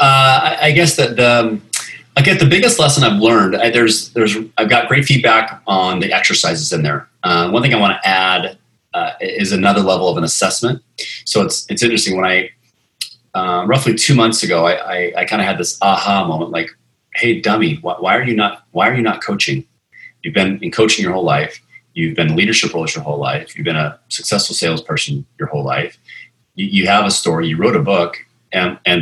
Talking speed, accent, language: 220 wpm, American, English